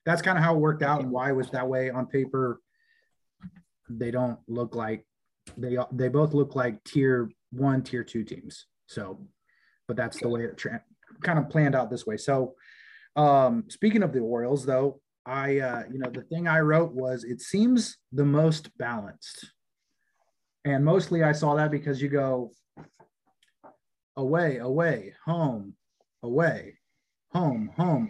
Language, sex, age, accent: English, male, 30-49, American